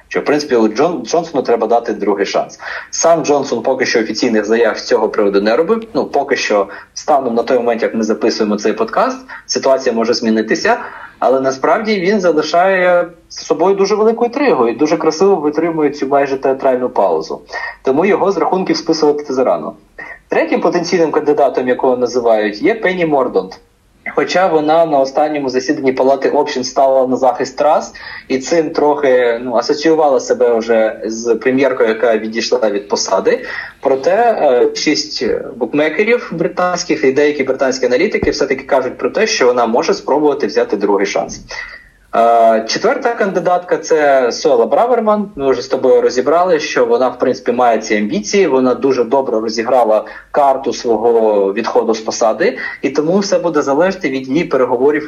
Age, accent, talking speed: 20-39, native, 155 wpm